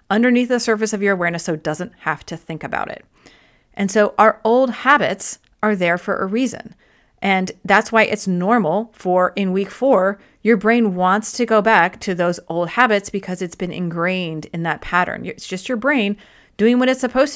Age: 30-49